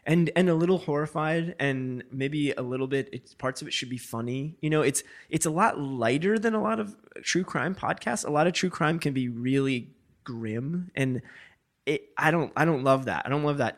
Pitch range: 115-150 Hz